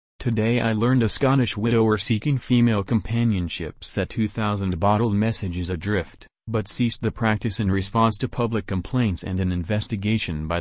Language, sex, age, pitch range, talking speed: English, male, 40-59, 95-115 Hz, 155 wpm